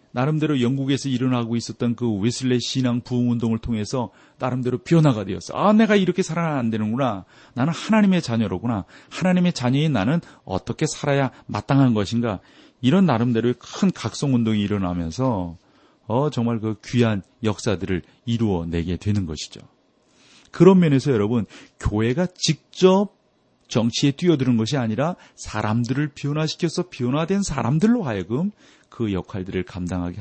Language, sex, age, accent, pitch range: Korean, male, 40-59, native, 95-135 Hz